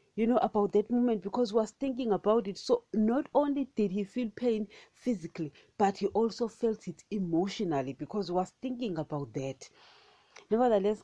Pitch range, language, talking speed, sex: 160-210 Hz, English, 175 wpm, female